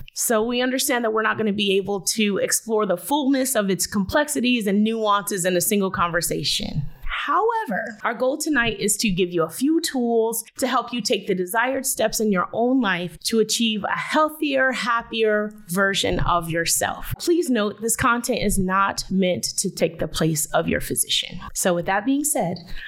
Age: 30-49